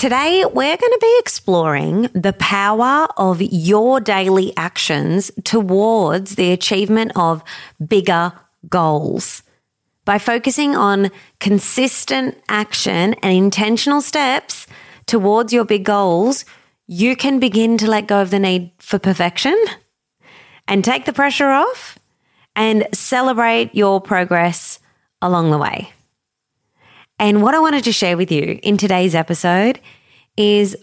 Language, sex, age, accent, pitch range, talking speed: English, female, 30-49, Australian, 180-230 Hz, 125 wpm